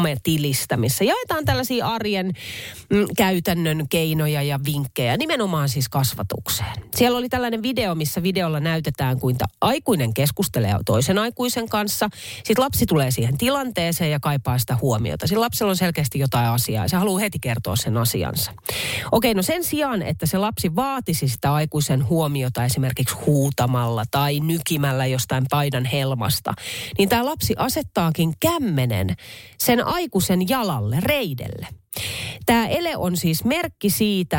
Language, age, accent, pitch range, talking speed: Finnish, 30-49, native, 125-190 Hz, 140 wpm